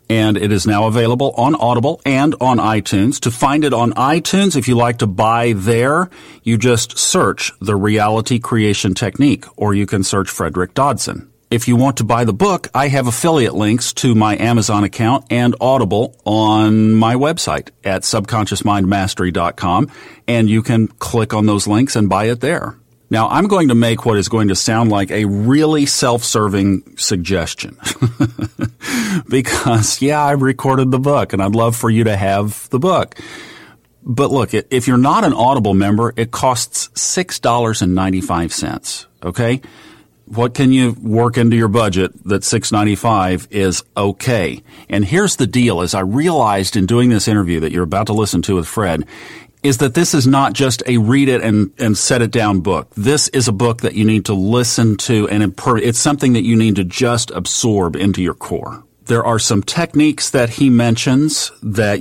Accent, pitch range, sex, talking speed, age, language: American, 105-125 Hz, male, 180 wpm, 40-59, English